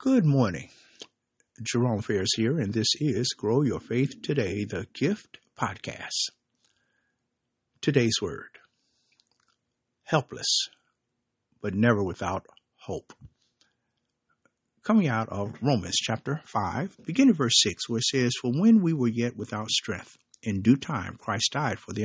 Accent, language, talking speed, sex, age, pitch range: American, English, 130 wpm, male, 60-79, 110-140 Hz